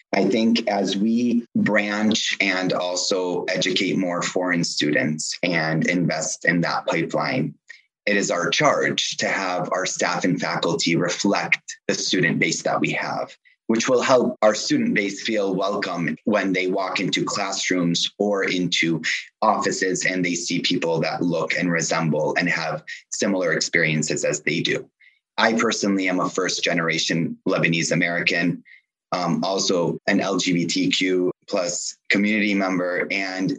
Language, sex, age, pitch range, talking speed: English, male, 30-49, 90-115 Hz, 140 wpm